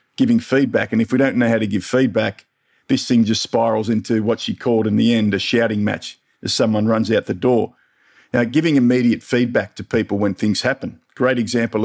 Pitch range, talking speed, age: 110-125 Hz, 215 wpm, 50-69